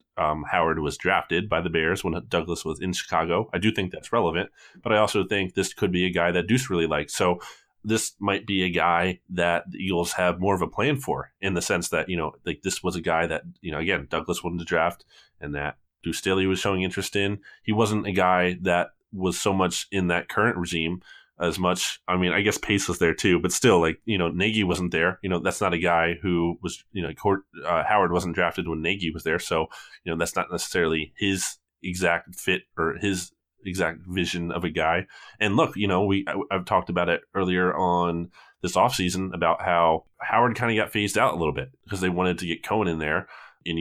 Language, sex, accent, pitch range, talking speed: English, male, American, 85-100 Hz, 235 wpm